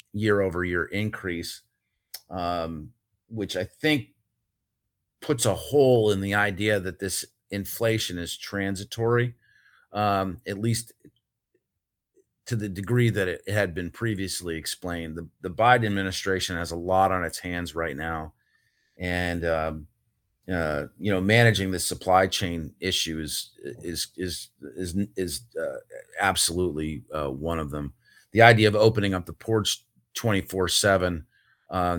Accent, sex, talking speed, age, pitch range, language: American, male, 135 wpm, 40-59, 85-105 Hz, English